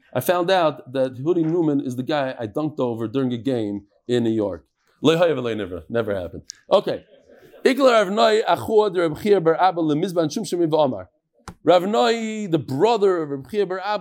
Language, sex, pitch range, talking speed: English, male, 130-195 Hz, 115 wpm